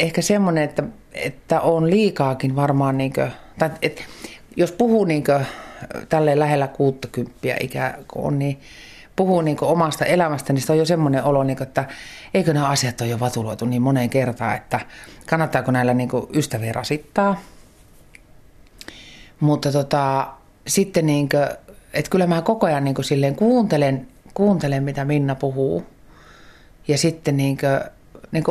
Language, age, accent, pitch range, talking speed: Finnish, 30-49, native, 135-165 Hz, 160 wpm